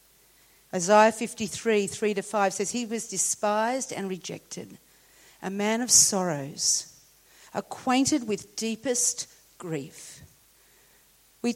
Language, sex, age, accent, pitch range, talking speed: English, female, 50-69, Australian, 180-260 Hz, 90 wpm